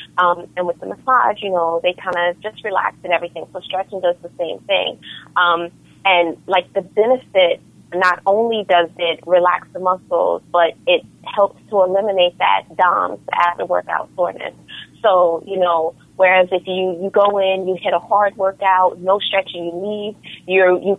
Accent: American